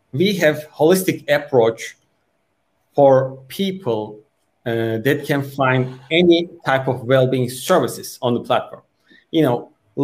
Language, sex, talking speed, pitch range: Portuguese, male, 125 wpm, 130-165 Hz